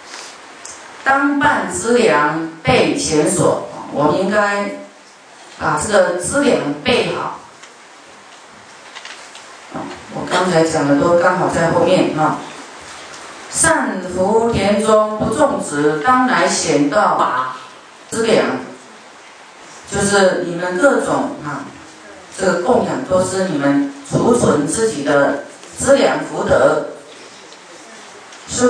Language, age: Chinese, 40-59